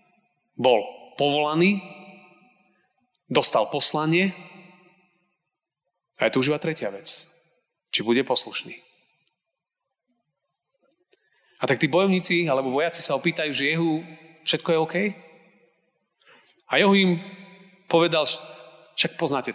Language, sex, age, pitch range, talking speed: Slovak, male, 30-49, 130-180 Hz, 105 wpm